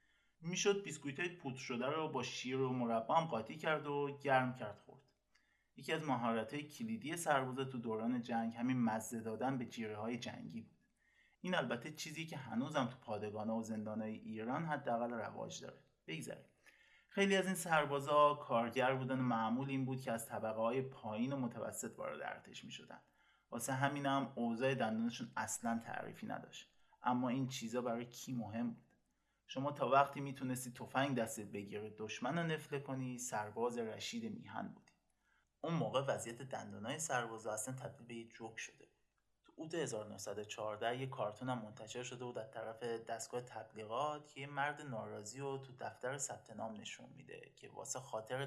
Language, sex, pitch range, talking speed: Persian, male, 115-145 Hz, 165 wpm